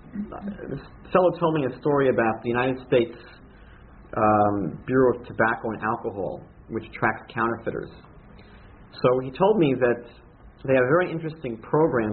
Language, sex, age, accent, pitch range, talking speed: English, male, 40-59, American, 115-155 Hz, 155 wpm